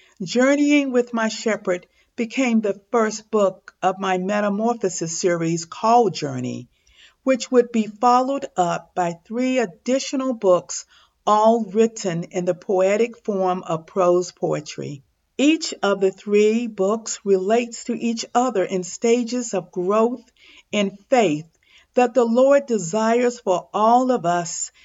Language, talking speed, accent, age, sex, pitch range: English, 135 wpm, American, 50-69, female, 185-240 Hz